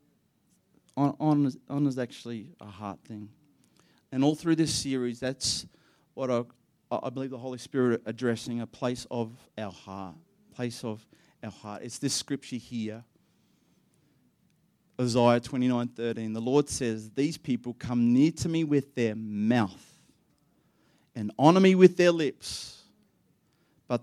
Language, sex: English, male